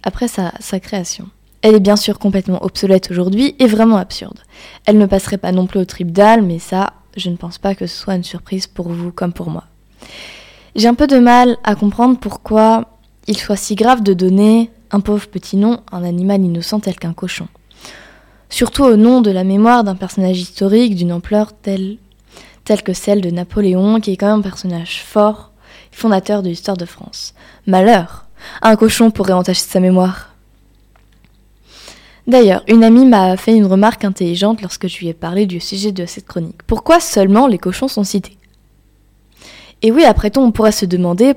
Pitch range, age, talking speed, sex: 185-220 Hz, 20-39, 190 wpm, female